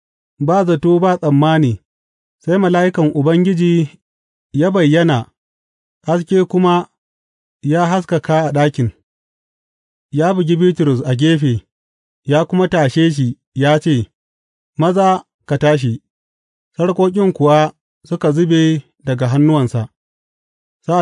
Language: English